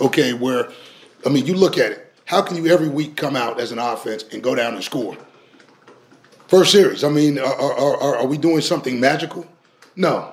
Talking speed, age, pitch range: 210 wpm, 30-49, 135-170 Hz